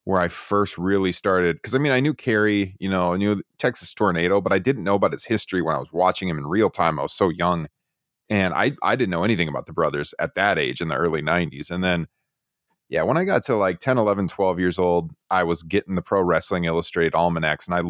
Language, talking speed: English, 250 wpm